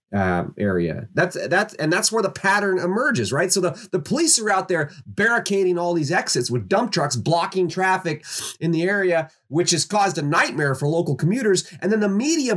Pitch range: 150-200 Hz